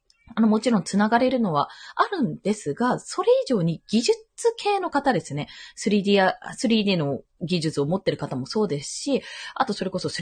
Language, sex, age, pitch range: Japanese, female, 20-39, 185-310 Hz